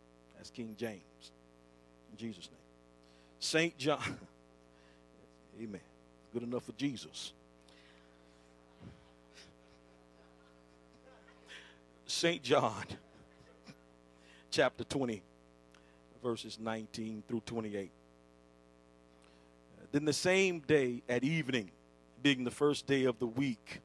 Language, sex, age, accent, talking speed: English, male, 50-69, American, 85 wpm